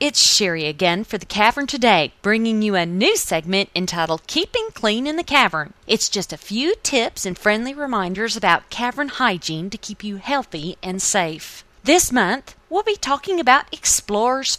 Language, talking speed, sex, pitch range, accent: English, 175 wpm, female, 190-280 Hz, American